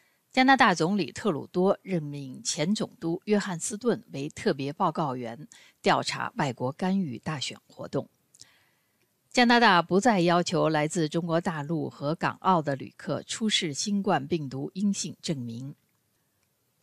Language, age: Chinese, 60-79